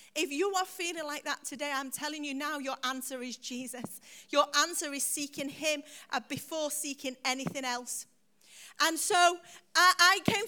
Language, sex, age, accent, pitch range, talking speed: English, female, 40-59, British, 250-325 Hz, 165 wpm